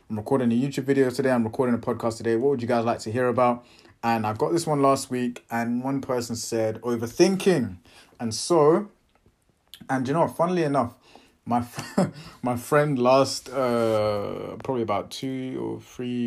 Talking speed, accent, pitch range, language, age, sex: 180 wpm, British, 110-130 Hz, English, 20-39, male